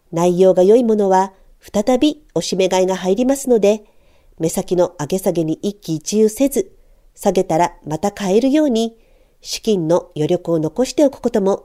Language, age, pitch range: Japanese, 50-69, 175-235 Hz